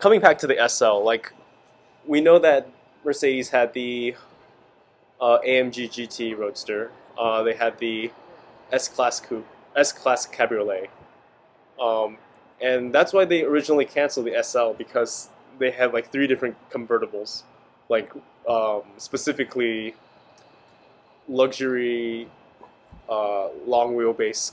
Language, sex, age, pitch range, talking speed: English, male, 20-39, 115-140 Hz, 120 wpm